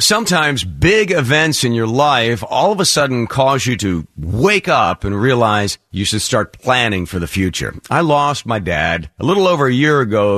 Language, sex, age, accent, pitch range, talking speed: English, male, 50-69, American, 110-155 Hz, 195 wpm